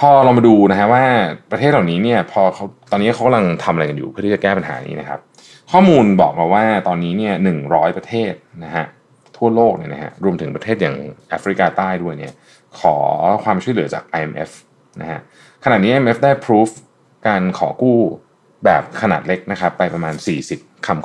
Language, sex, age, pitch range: Thai, male, 20-39, 85-120 Hz